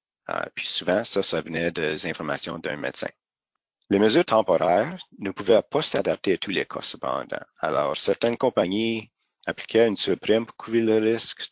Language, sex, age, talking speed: English, male, 50-69, 165 wpm